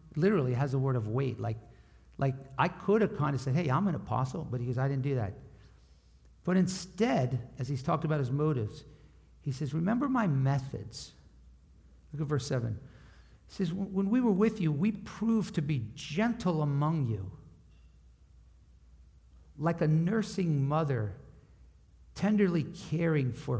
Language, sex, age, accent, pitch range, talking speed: English, male, 50-69, American, 115-185 Hz, 160 wpm